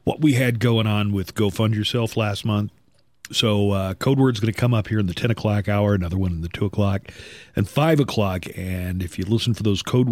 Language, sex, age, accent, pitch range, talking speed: English, male, 40-59, American, 100-130 Hz, 230 wpm